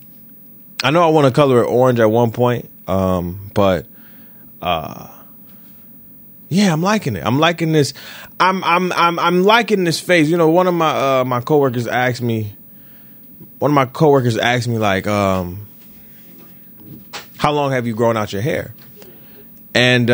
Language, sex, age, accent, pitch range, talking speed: English, male, 20-39, American, 105-145 Hz, 165 wpm